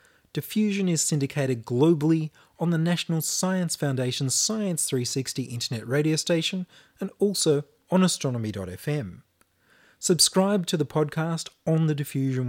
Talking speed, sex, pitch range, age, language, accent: 120 wpm, male, 130-175 Hz, 30-49, English, Australian